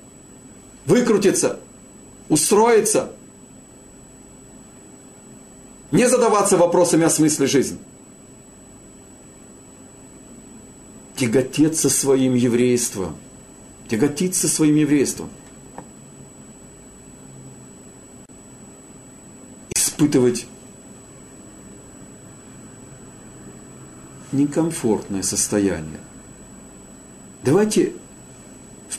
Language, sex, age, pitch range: Russian, male, 50-69, 100-155 Hz